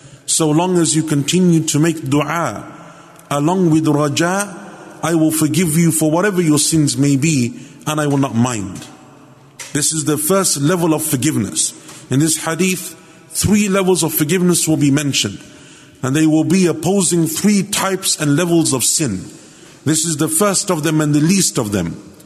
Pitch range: 150-180 Hz